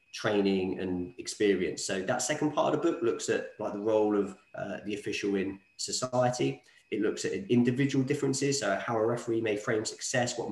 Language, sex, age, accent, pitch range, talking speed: English, male, 20-39, British, 100-125 Hz, 195 wpm